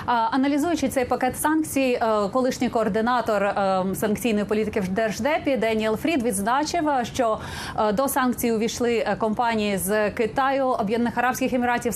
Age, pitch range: 30-49, 215-260 Hz